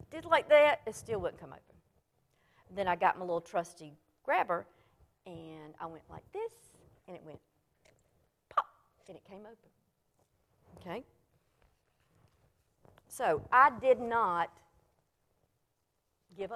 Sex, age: female, 50-69